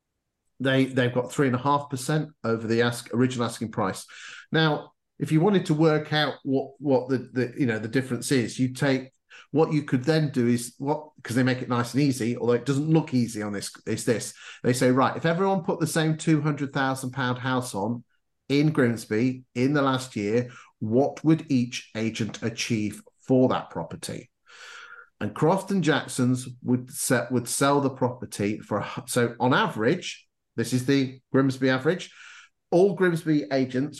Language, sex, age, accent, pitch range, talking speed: English, male, 40-59, British, 120-150 Hz, 180 wpm